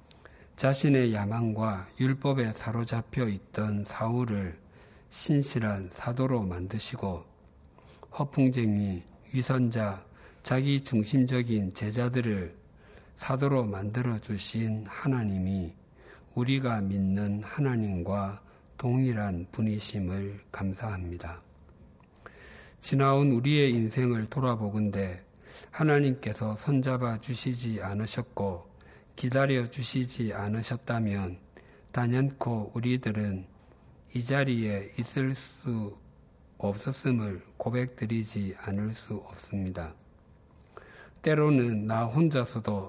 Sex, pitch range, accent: male, 100-130 Hz, native